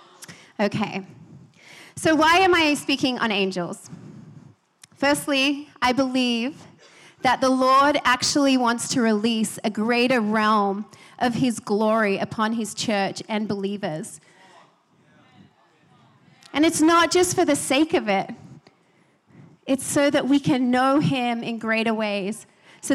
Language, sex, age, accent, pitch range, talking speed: English, female, 30-49, American, 210-275 Hz, 130 wpm